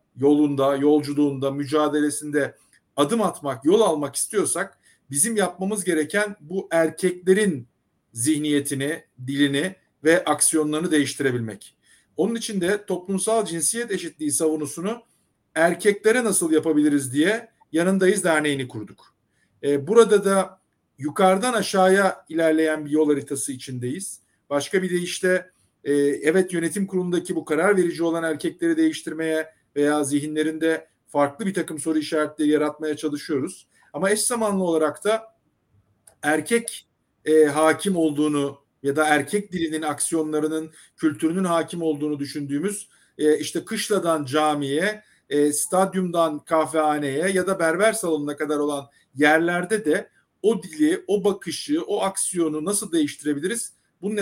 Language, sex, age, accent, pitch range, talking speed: Turkish, male, 50-69, native, 150-190 Hz, 120 wpm